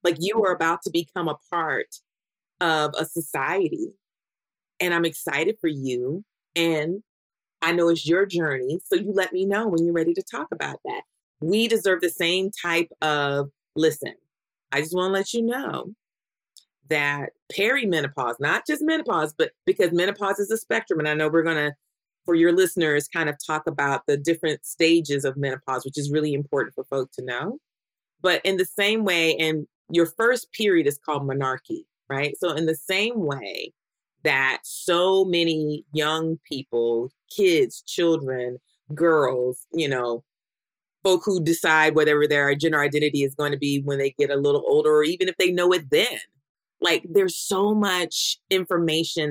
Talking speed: 170 wpm